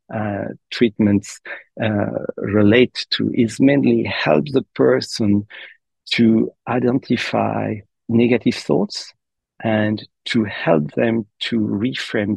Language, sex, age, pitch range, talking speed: English, male, 40-59, 100-115 Hz, 90 wpm